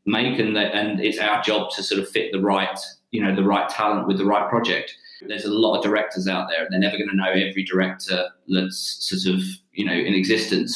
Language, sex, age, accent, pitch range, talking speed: English, male, 20-39, British, 100-115 Hz, 245 wpm